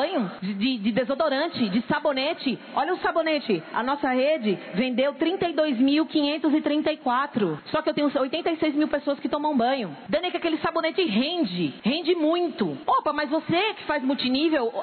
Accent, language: Brazilian, Portuguese